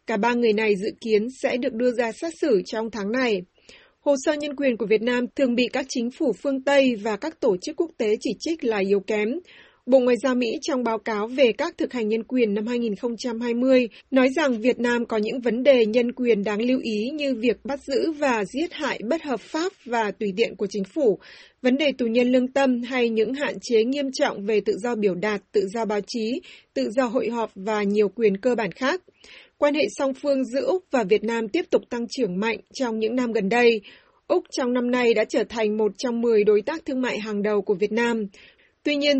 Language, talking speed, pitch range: Vietnamese, 235 wpm, 220-275 Hz